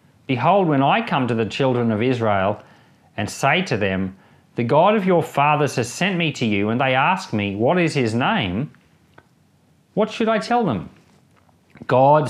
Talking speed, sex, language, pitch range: 180 wpm, male, English, 110-170 Hz